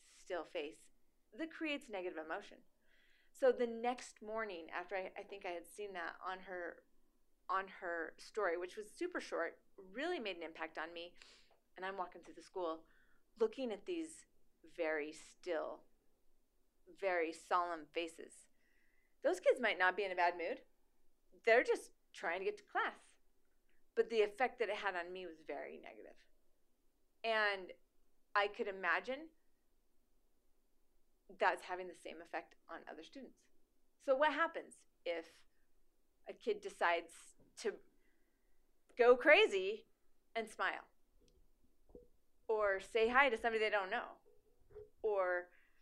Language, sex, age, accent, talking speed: English, female, 30-49, American, 140 wpm